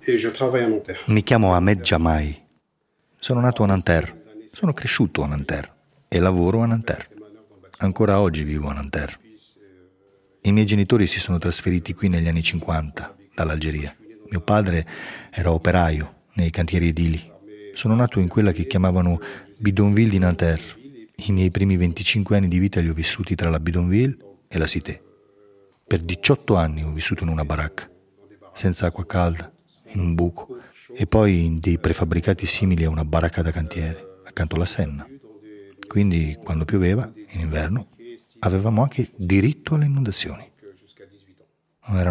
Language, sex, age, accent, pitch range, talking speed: Italian, male, 40-59, native, 80-100 Hz, 150 wpm